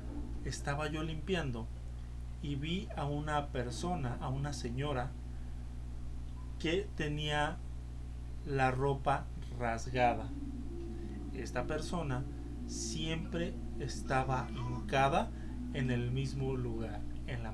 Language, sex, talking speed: Spanish, male, 90 wpm